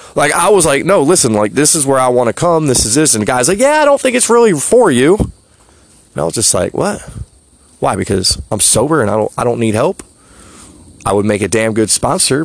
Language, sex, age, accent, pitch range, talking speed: English, male, 30-49, American, 105-135 Hz, 255 wpm